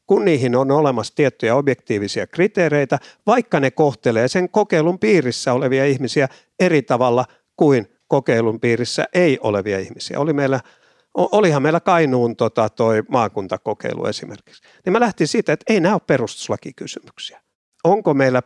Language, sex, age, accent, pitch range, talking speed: Finnish, male, 50-69, native, 120-160 Hz, 140 wpm